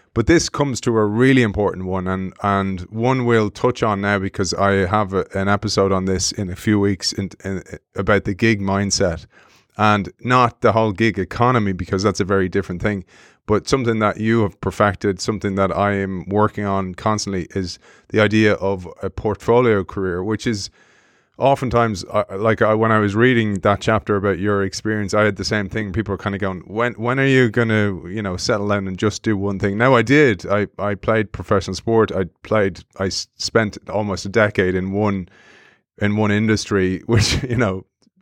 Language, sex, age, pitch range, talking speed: English, male, 20-39, 95-115 Hz, 200 wpm